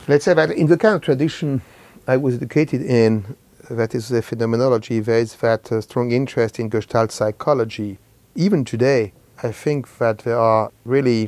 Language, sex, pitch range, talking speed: English, male, 115-150 Hz, 170 wpm